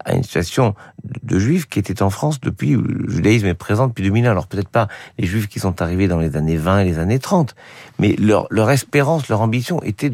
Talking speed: 230 wpm